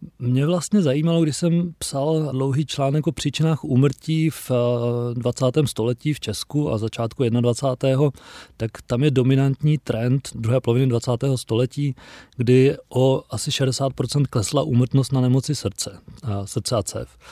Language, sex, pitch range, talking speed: Czech, male, 120-140 Hz, 140 wpm